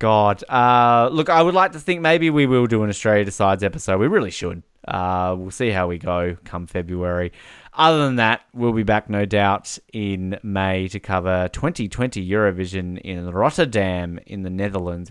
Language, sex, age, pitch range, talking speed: English, male, 20-39, 95-115 Hz, 185 wpm